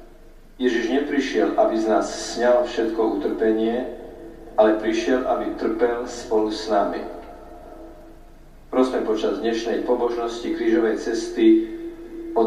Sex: male